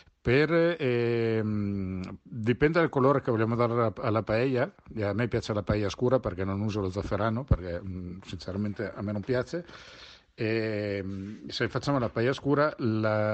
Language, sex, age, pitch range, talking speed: Italian, male, 50-69, 95-120 Hz, 145 wpm